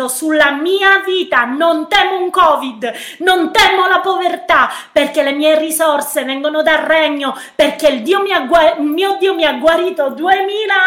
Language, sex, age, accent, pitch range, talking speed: Italian, female, 30-49, native, 285-355 Hz, 150 wpm